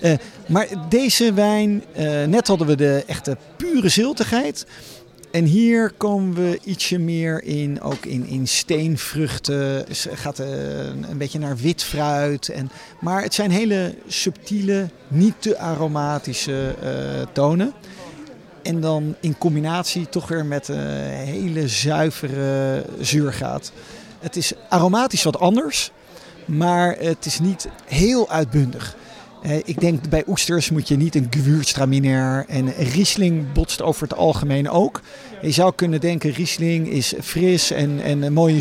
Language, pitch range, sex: Dutch, 140-180 Hz, male